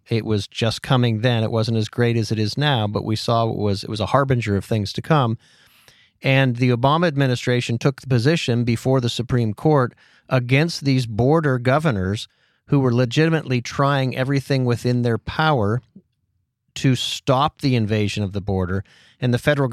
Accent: American